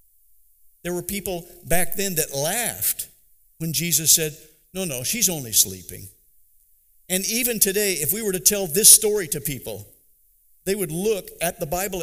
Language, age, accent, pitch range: English, 60-79, American, 135-195 Hz